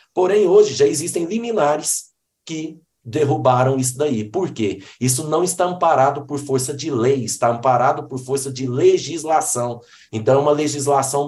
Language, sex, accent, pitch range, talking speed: Portuguese, male, Brazilian, 125-175 Hz, 155 wpm